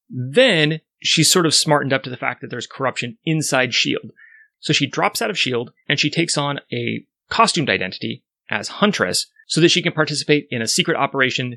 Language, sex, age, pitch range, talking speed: English, male, 30-49, 125-160 Hz, 195 wpm